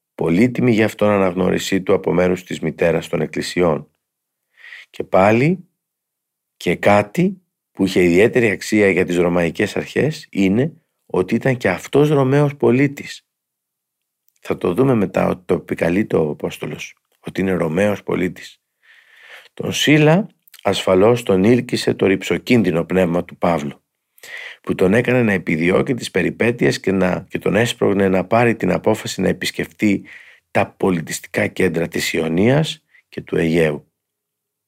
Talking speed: 135 wpm